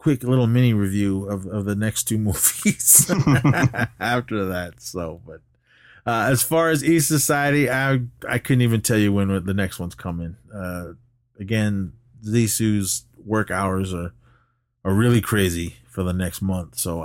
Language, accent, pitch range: English, American, 100-125 Hz